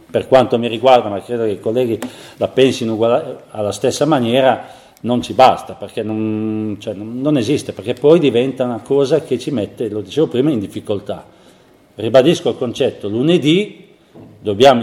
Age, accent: 40-59, native